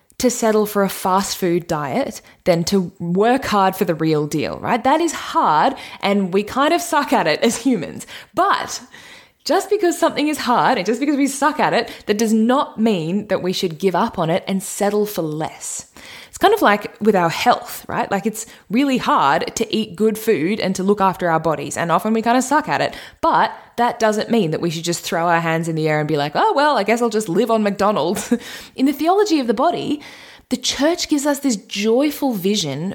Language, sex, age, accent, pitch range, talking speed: English, female, 10-29, Australian, 190-260 Hz, 230 wpm